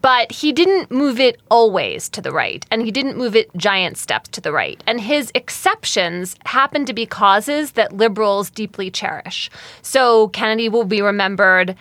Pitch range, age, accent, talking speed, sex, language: 190-230 Hz, 20-39, American, 180 wpm, female, English